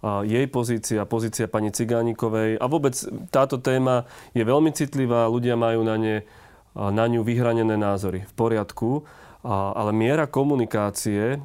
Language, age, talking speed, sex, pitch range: Slovak, 30-49, 140 wpm, male, 105-120 Hz